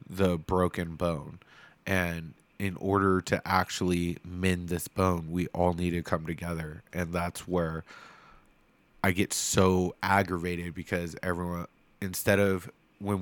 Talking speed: 130 wpm